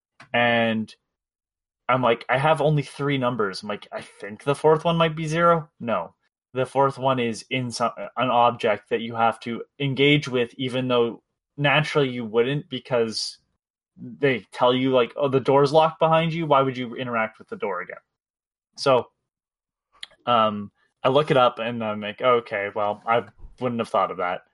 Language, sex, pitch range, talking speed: English, male, 115-145 Hz, 180 wpm